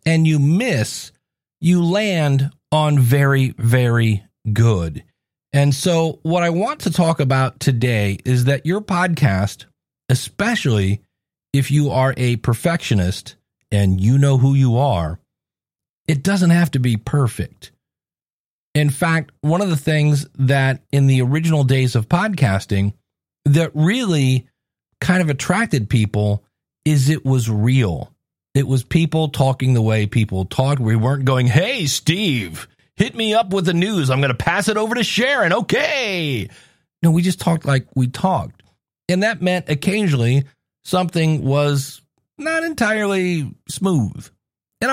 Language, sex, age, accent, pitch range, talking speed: English, male, 40-59, American, 120-170 Hz, 145 wpm